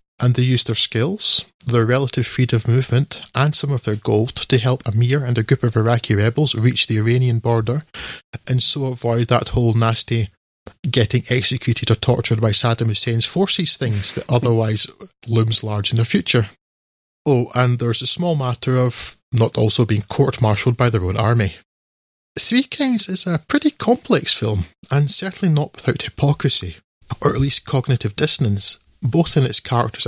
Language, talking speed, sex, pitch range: English, 170 wpm, male, 110-135 Hz